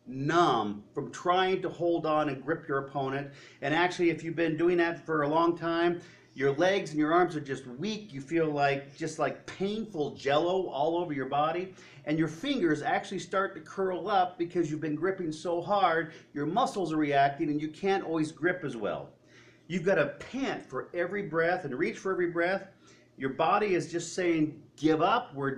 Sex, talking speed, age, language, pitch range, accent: male, 200 wpm, 40-59, English, 145-185 Hz, American